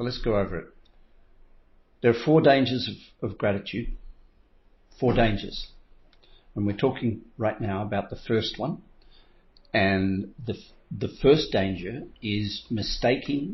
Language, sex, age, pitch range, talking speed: English, male, 50-69, 100-120 Hz, 130 wpm